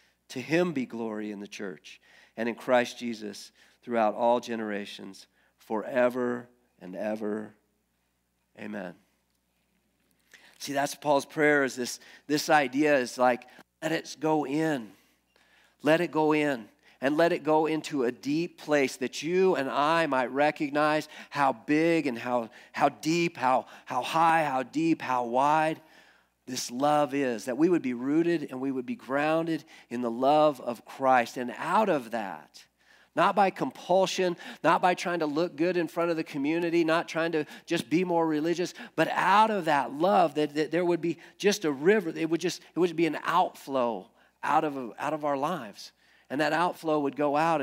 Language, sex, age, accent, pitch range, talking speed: English, male, 40-59, American, 125-165 Hz, 175 wpm